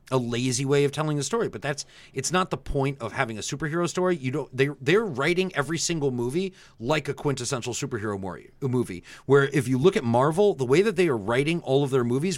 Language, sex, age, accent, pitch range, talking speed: English, male, 30-49, American, 120-170 Hz, 230 wpm